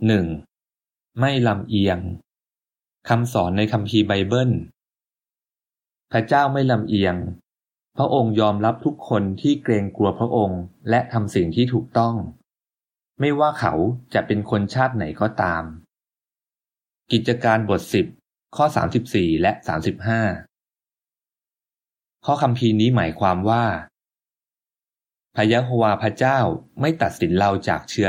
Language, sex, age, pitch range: Thai, male, 20-39, 100-125 Hz